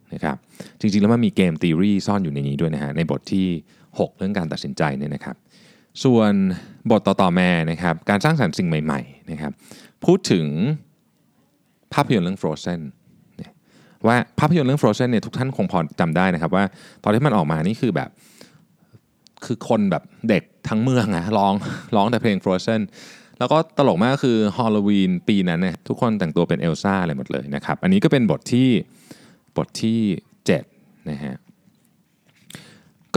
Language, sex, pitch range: Thai, male, 90-130 Hz